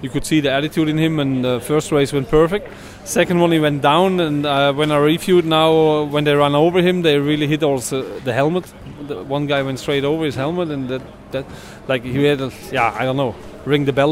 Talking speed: 245 wpm